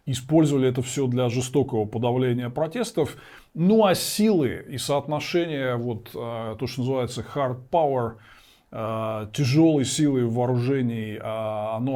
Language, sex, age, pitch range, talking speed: Russian, male, 20-39, 120-150 Hz, 110 wpm